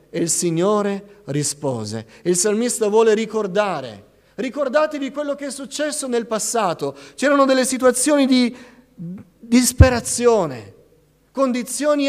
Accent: native